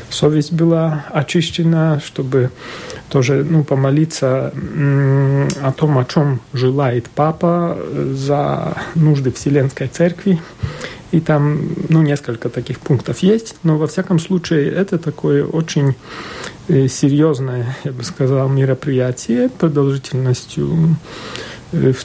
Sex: male